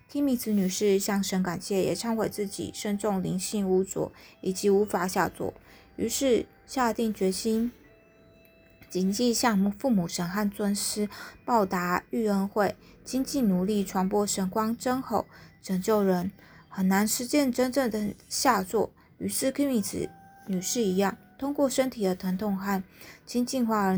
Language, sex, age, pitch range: Chinese, female, 20-39, 190-230 Hz